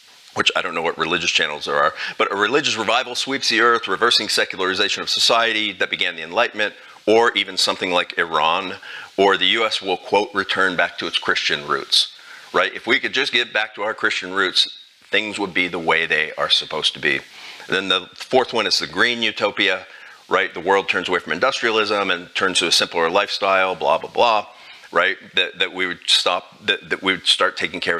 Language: English